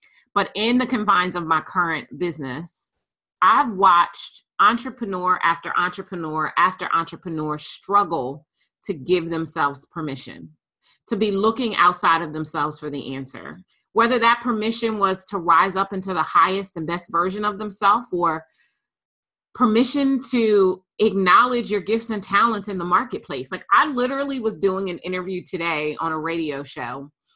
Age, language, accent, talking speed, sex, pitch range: 30-49, English, American, 145 wpm, female, 165-230 Hz